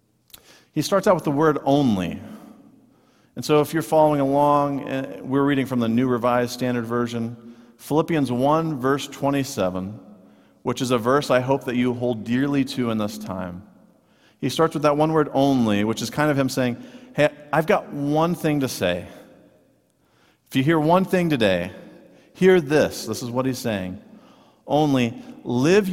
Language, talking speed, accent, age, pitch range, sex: English, 170 wpm, American, 40-59, 115-145 Hz, male